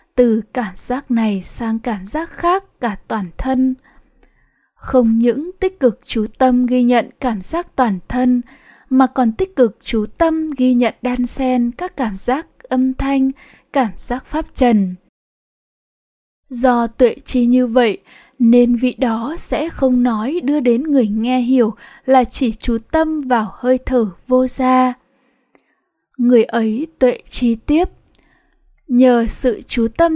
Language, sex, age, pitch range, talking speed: Vietnamese, female, 20-39, 230-270 Hz, 150 wpm